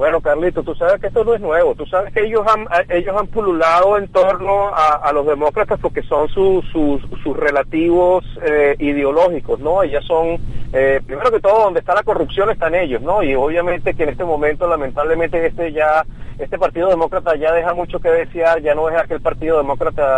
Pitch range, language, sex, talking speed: 135-175 Hz, English, male, 200 wpm